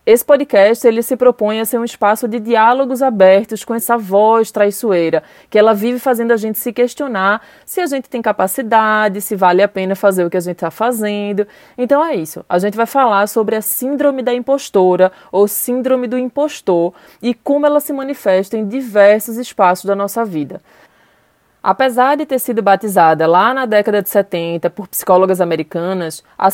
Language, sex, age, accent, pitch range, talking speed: Portuguese, female, 20-39, Brazilian, 195-240 Hz, 180 wpm